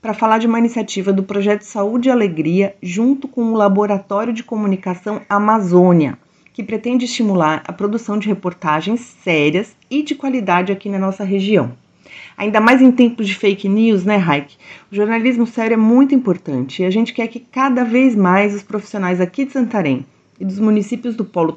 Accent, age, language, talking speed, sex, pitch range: Brazilian, 30-49, Portuguese, 180 wpm, female, 180-225 Hz